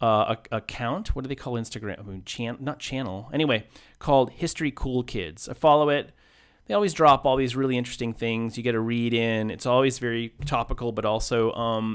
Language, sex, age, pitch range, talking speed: English, male, 30-49, 115-140 Hz, 185 wpm